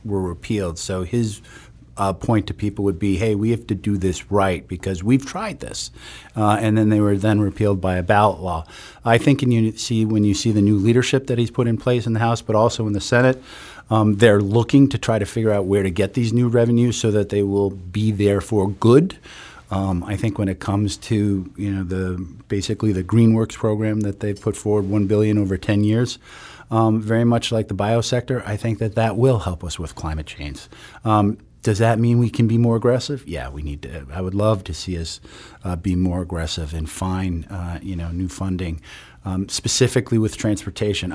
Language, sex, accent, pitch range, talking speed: English, male, American, 90-110 Hz, 220 wpm